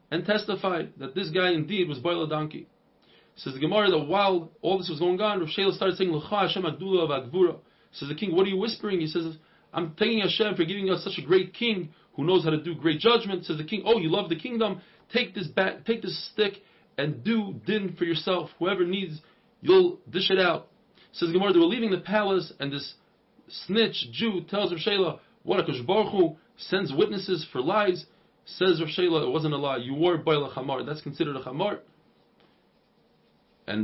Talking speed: 200 wpm